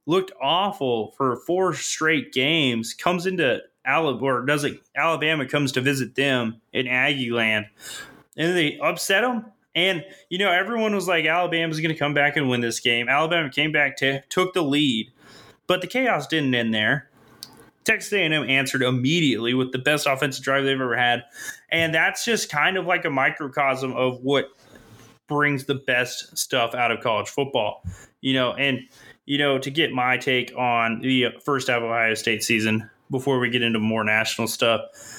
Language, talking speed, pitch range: English, 180 wpm, 125-160 Hz